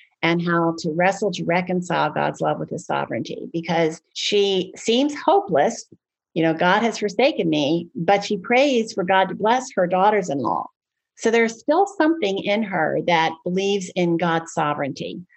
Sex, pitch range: female, 165-210 Hz